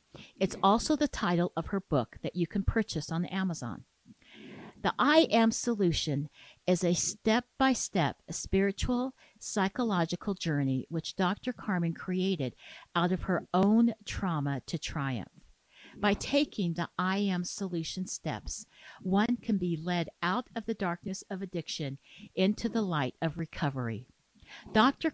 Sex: female